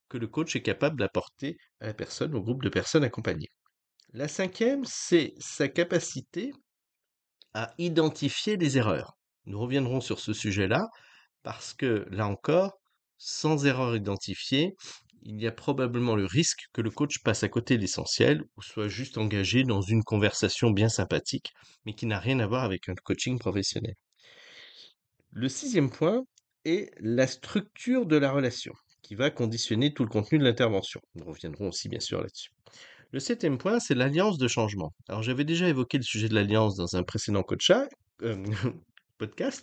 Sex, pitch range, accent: male, 105-150 Hz, French